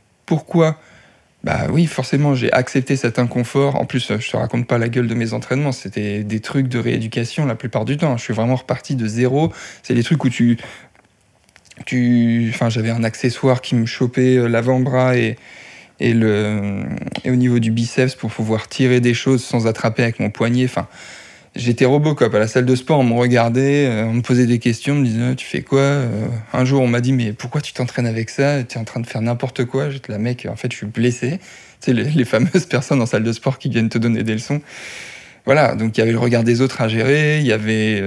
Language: French